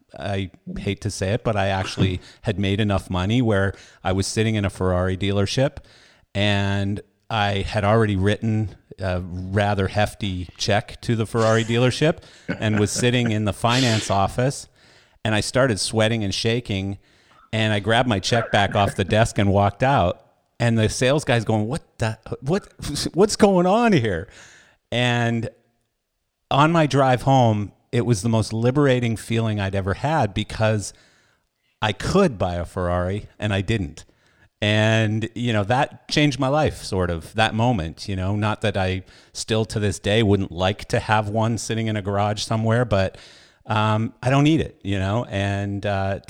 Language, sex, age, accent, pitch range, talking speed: English, male, 50-69, American, 95-115 Hz, 170 wpm